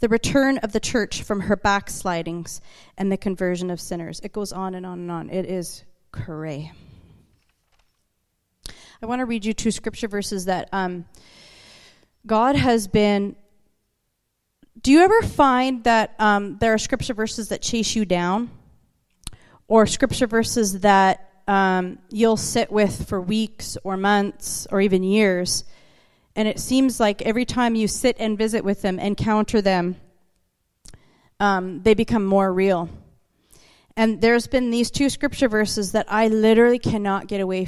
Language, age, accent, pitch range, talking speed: English, 30-49, American, 190-225 Hz, 155 wpm